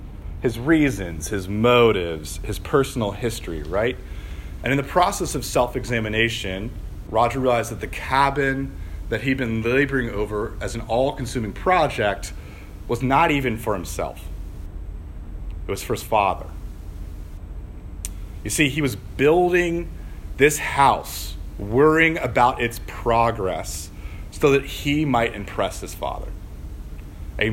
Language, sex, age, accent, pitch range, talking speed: English, male, 40-59, American, 80-125 Hz, 125 wpm